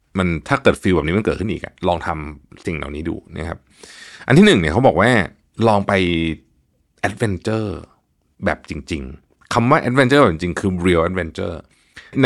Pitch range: 85-120 Hz